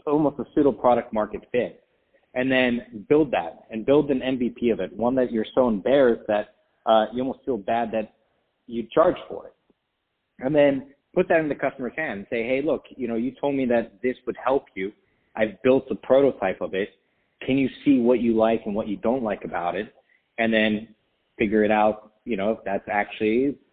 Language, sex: English, male